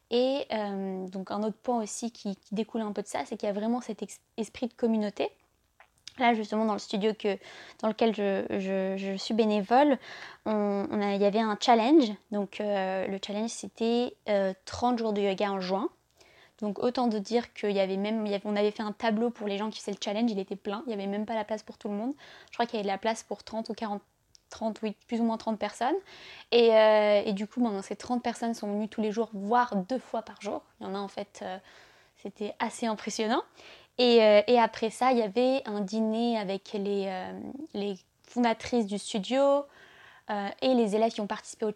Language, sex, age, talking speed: French, female, 20-39, 235 wpm